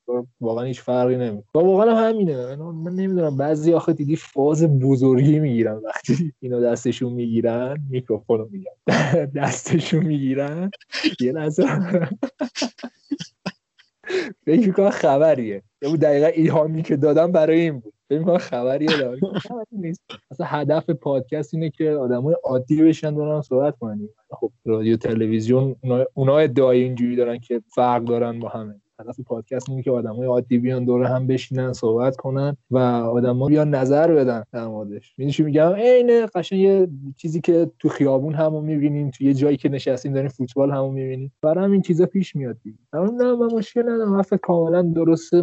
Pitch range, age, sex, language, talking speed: 125-160 Hz, 20-39, male, Persian, 150 wpm